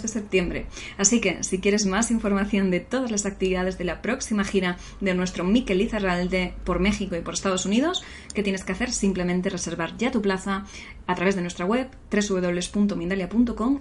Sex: female